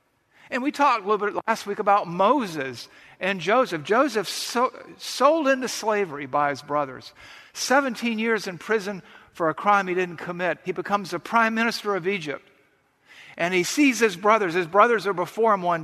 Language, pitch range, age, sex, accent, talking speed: English, 155-220 Hz, 50-69, male, American, 180 wpm